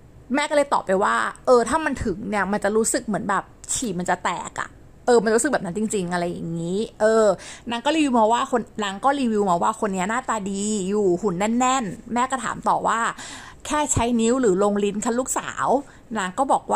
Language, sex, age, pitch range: Thai, female, 30-49, 210-260 Hz